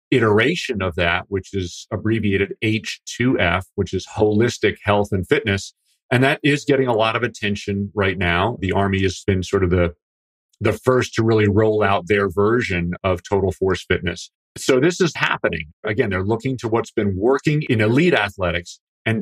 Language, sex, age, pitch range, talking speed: English, male, 40-59, 95-115 Hz, 180 wpm